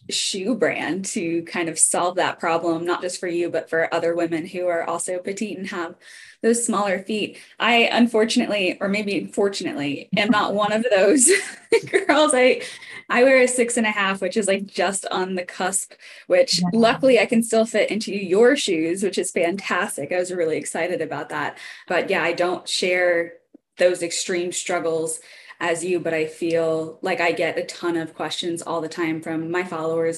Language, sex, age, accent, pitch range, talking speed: English, female, 20-39, American, 170-255 Hz, 190 wpm